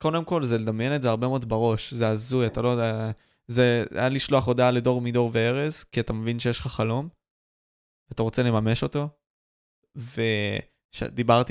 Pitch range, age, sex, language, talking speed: 110-125 Hz, 20-39, male, Hebrew, 165 wpm